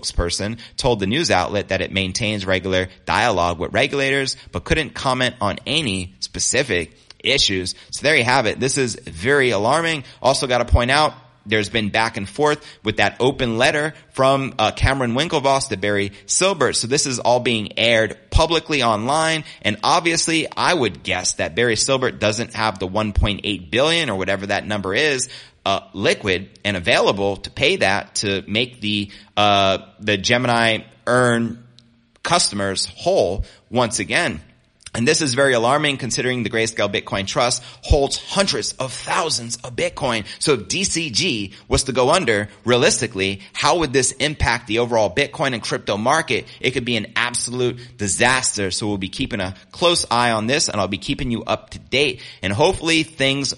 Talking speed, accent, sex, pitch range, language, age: 170 wpm, American, male, 100-135 Hz, English, 30-49